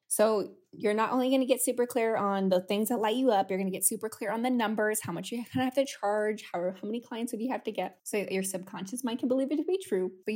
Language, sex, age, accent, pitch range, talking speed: English, female, 20-39, American, 200-260 Hz, 300 wpm